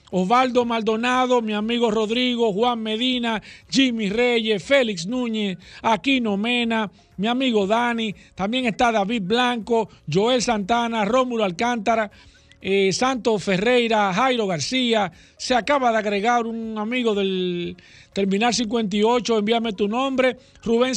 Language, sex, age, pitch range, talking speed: Spanish, male, 50-69, 195-240 Hz, 120 wpm